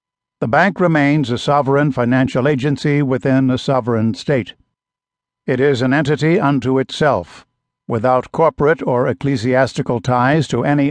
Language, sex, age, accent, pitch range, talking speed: English, male, 60-79, American, 125-150 Hz, 130 wpm